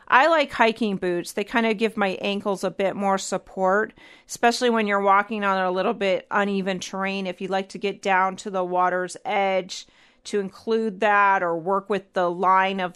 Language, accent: English, American